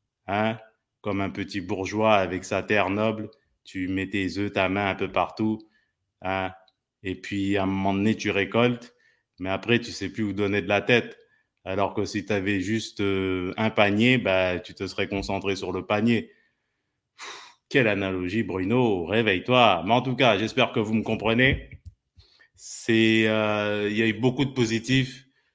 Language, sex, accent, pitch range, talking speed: French, male, French, 95-115 Hz, 180 wpm